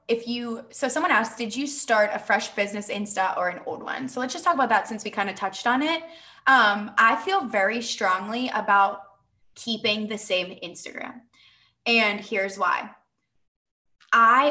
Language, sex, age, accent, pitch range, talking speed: English, female, 20-39, American, 210-265 Hz, 180 wpm